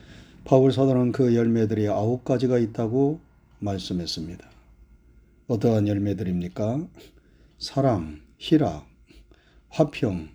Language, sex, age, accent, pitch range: Korean, male, 40-59, native, 100-145 Hz